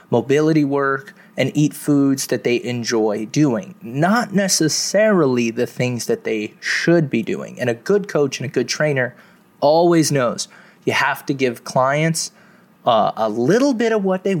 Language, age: English, 20-39